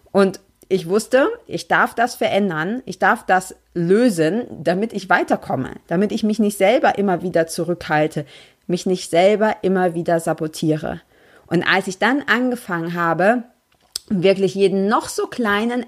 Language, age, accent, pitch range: German, 30-49, German, 180-230 Hz